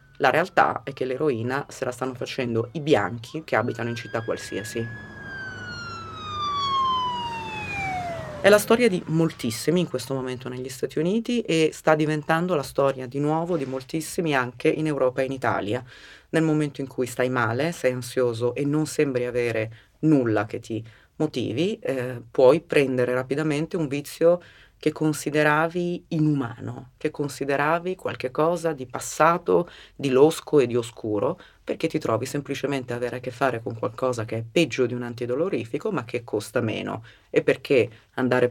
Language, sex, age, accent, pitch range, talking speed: Italian, female, 30-49, native, 120-155 Hz, 155 wpm